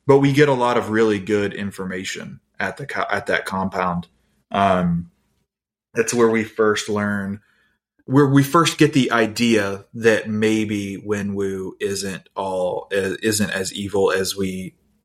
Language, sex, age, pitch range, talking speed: English, male, 20-39, 100-120 Hz, 150 wpm